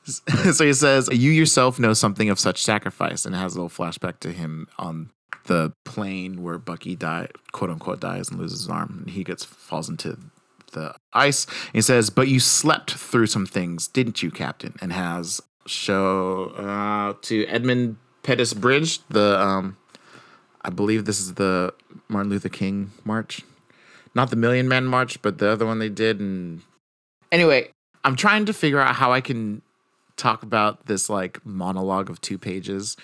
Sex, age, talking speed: male, 30-49, 175 wpm